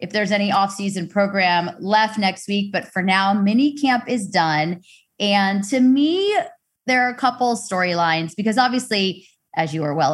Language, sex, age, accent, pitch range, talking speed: English, female, 20-39, American, 170-215 Hz, 165 wpm